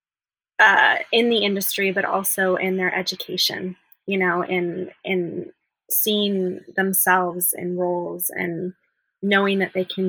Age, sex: 20-39, female